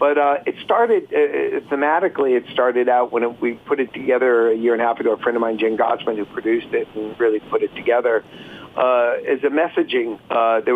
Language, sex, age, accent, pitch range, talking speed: English, male, 50-69, American, 110-145 Hz, 230 wpm